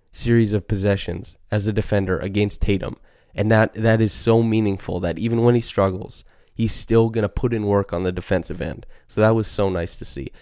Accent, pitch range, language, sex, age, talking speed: American, 100-115 Hz, English, male, 20-39, 215 wpm